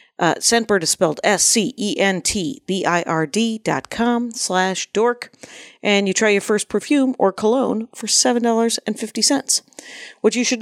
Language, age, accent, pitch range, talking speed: English, 40-59, American, 175-245 Hz, 170 wpm